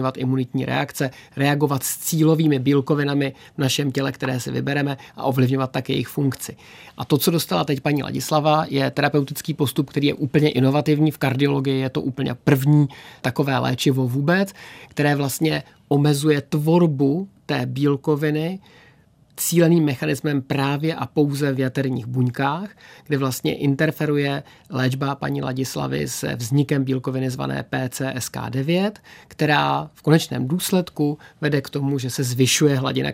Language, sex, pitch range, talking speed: Czech, male, 135-150 Hz, 140 wpm